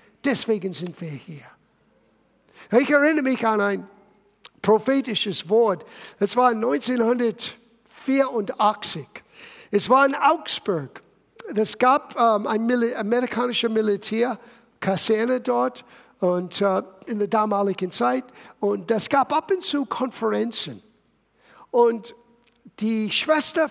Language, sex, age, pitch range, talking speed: German, male, 60-79, 200-250 Hz, 105 wpm